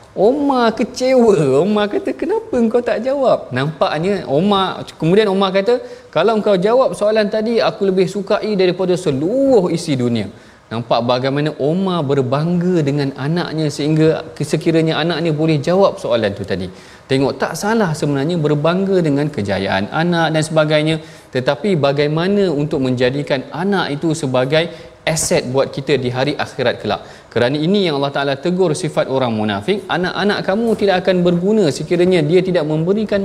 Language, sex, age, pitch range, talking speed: Malayalam, male, 30-49, 140-190 Hz, 145 wpm